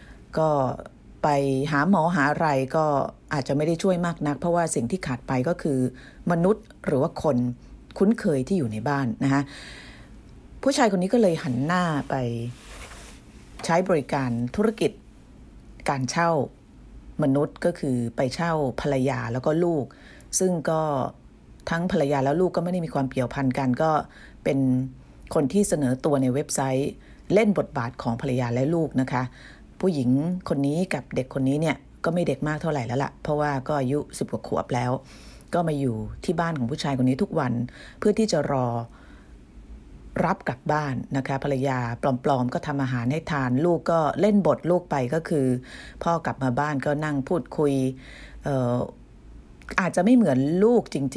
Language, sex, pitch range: Thai, female, 130-170 Hz